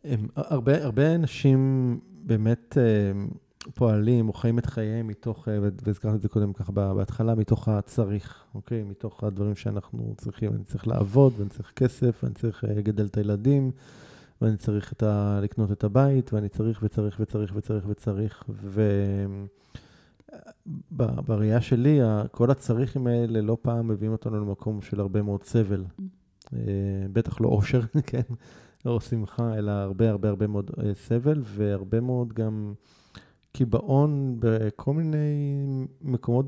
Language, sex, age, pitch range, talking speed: Hebrew, male, 20-39, 105-125 Hz, 140 wpm